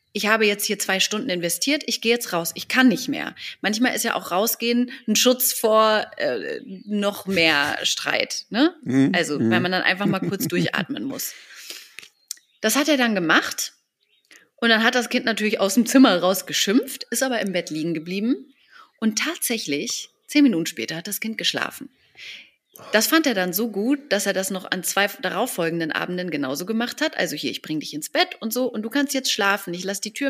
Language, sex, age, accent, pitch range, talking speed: German, female, 30-49, German, 175-250 Hz, 205 wpm